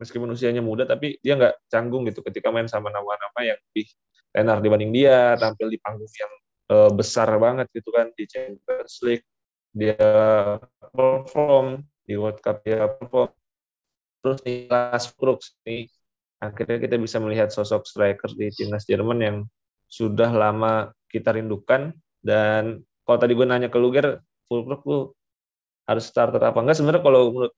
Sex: male